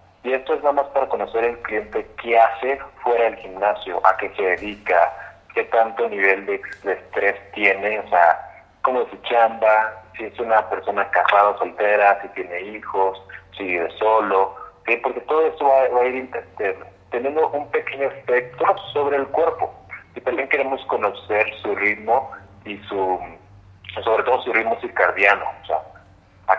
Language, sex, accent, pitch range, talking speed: Spanish, male, Mexican, 95-120 Hz, 170 wpm